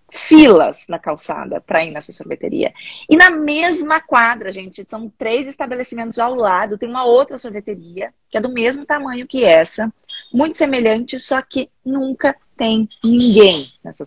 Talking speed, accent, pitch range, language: 155 wpm, Brazilian, 185-240 Hz, Portuguese